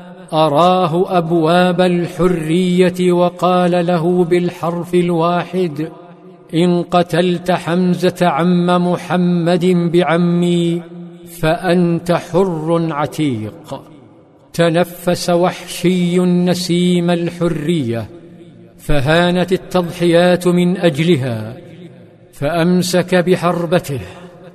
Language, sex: Arabic, male